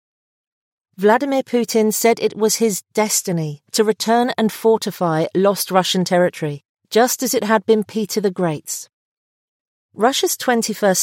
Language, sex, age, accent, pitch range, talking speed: English, female, 40-59, British, 180-220 Hz, 130 wpm